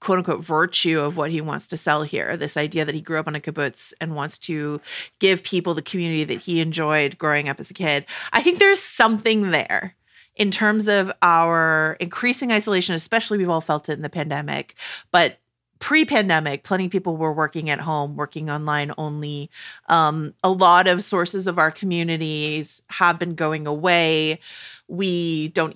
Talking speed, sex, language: 185 wpm, female, English